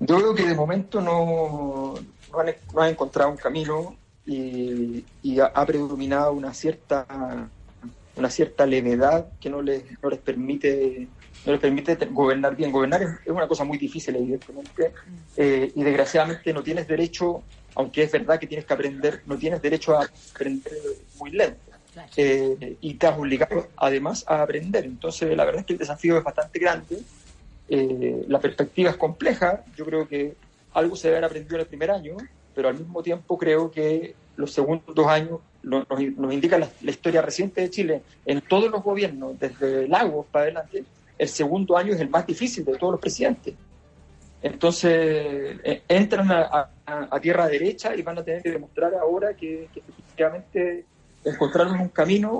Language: Spanish